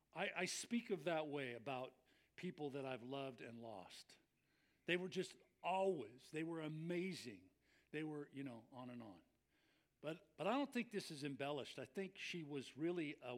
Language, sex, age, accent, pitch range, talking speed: English, male, 50-69, American, 140-200 Hz, 185 wpm